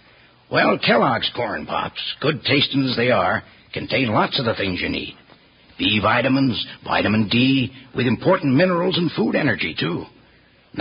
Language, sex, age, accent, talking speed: English, male, 60-79, American, 155 wpm